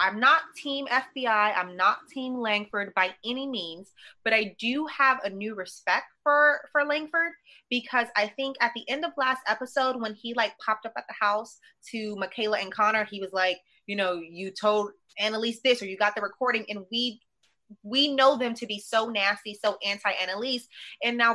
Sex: female